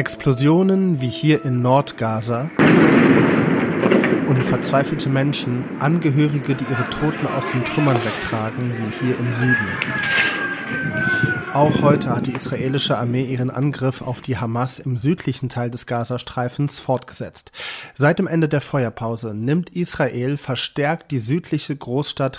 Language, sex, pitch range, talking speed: German, male, 120-145 Hz, 130 wpm